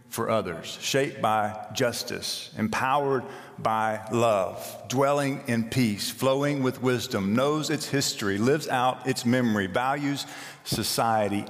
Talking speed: 120 wpm